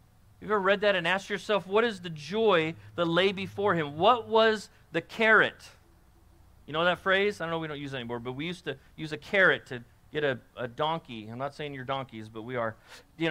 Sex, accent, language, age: male, American, English, 40-59